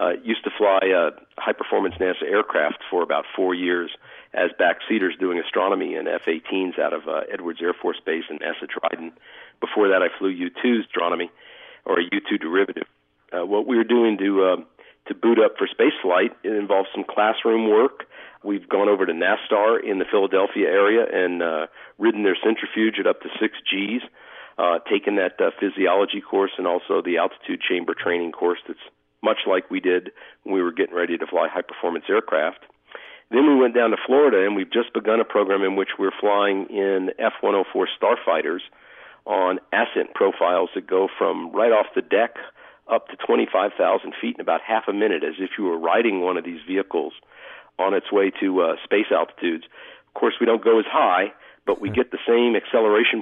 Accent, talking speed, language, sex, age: American, 190 wpm, English, male, 50-69